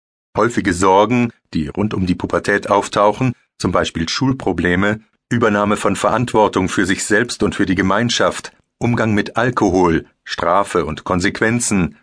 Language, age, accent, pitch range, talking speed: German, 50-69, German, 95-120 Hz, 135 wpm